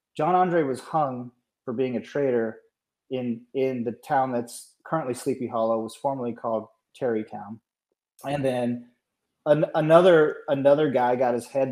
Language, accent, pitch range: English, American, 115-135 Hz